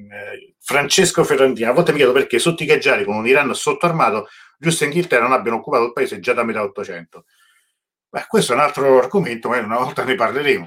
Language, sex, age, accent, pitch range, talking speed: Italian, male, 40-59, native, 100-135 Hz, 210 wpm